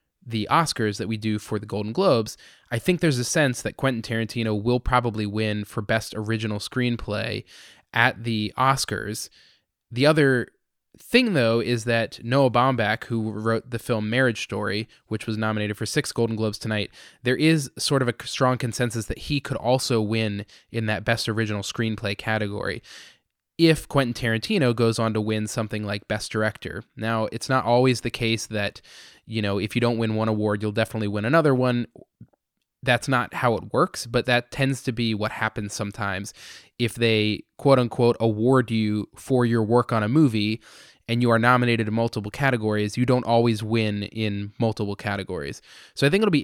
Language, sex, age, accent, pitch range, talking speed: English, male, 20-39, American, 110-125 Hz, 185 wpm